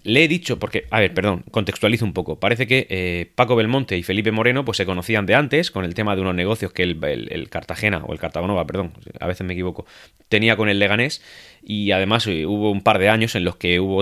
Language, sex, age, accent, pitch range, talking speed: Spanish, male, 30-49, Spanish, 95-120 Hz, 240 wpm